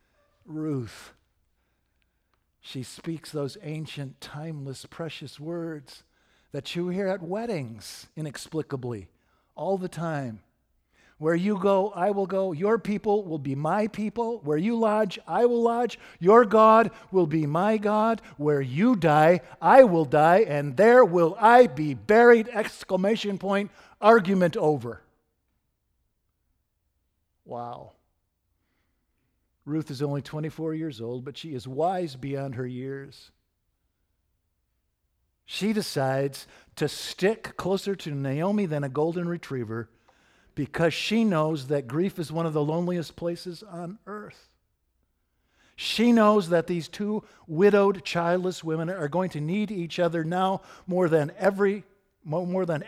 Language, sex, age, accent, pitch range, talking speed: English, male, 50-69, American, 130-195 Hz, 130 wpm